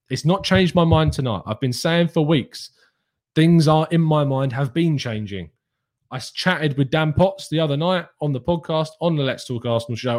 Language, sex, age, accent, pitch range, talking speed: English, male, 20-39, British, 125-180 Hz, 210 wpm